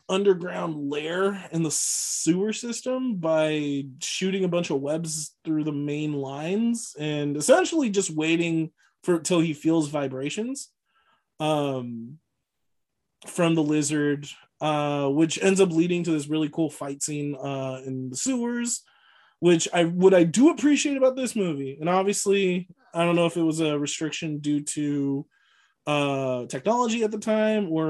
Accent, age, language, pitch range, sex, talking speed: American, 20-39, English, 145-190 Hz, male, 155 wpm